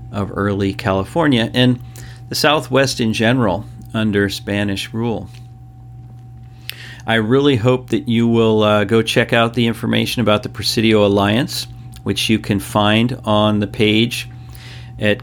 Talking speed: 140 wpm